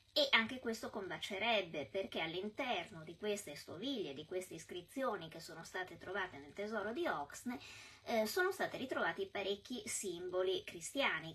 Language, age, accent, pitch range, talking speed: Italian, 20-39, native, 185-285 Hz, 145 wpm